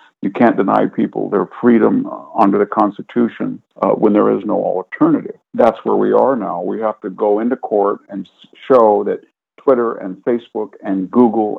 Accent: American